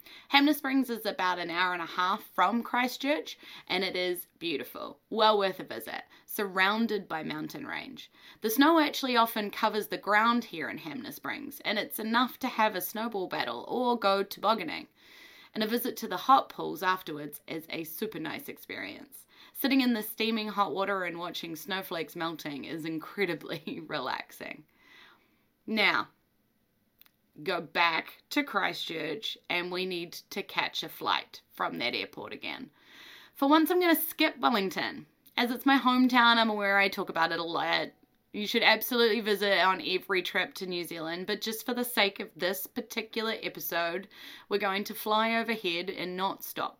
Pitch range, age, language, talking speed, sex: 185-250 Hz, 20-39, English, 170 wpm, female